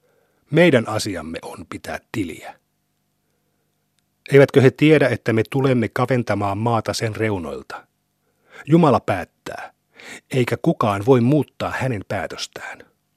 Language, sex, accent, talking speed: Finnish, male, native, 105 wpm